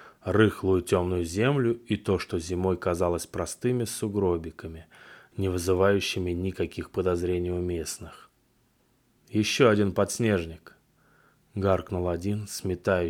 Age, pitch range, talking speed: 20-39, 90-115 Hz, 100 wpm